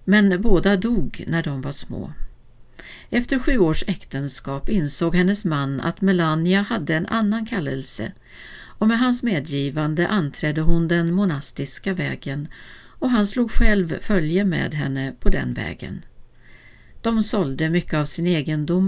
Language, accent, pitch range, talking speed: Swedish, native, 145-195 Hz, 145 wpm